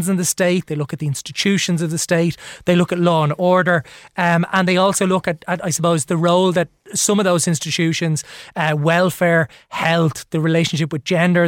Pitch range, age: 165-190 Hz, 20-39